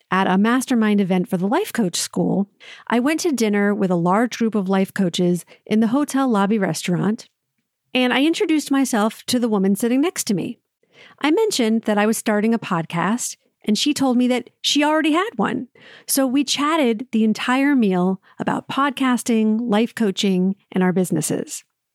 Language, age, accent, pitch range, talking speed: English, 40-59, American, 195-265 Hz, 180 wpm